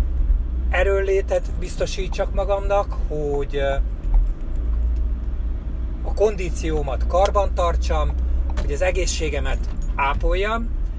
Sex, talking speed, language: male, 65 wpm, Hungarian